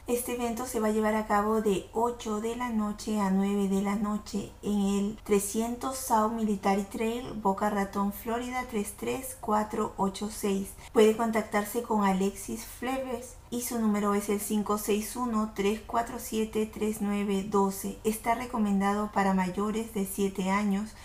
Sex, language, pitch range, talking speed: female, Spanish, 200-230 Hz, 130 wpm